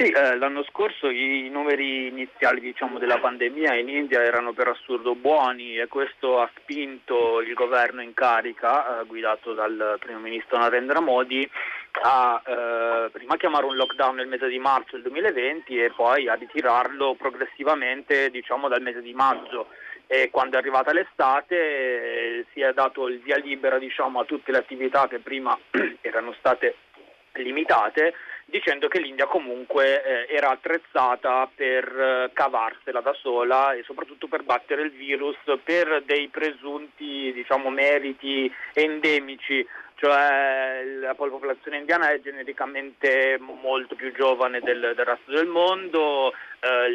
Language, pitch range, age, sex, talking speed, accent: Italian, 125-145 Hz, 30-49, male, 140 wpm, native